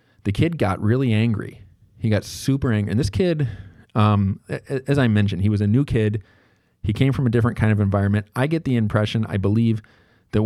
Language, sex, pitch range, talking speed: English, male, 100-115 Hz, 205 wpm